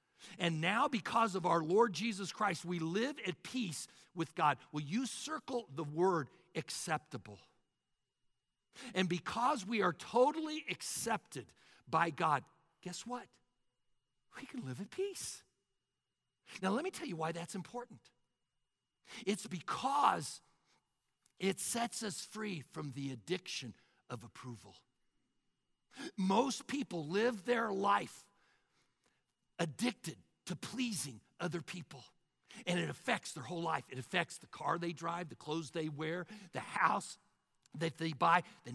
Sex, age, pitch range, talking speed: male, 60-79, 160-230 Hz, 135 wpm